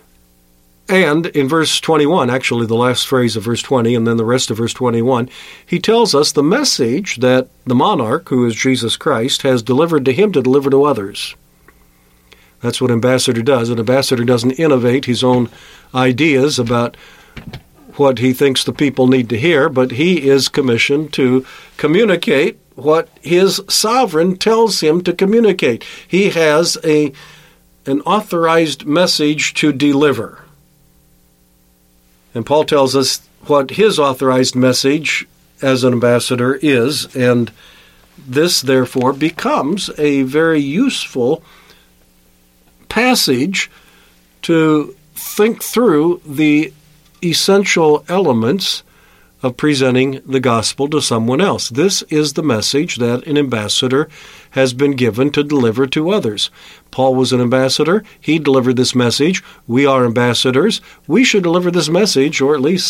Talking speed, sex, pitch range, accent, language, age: 140 wpm, male, 125-155 Hz, American, English, 50-69